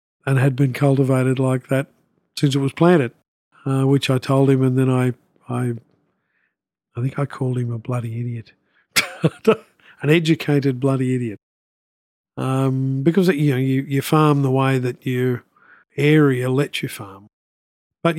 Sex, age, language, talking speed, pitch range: male, 50-69, English, 160 wpm, 125-145 Hz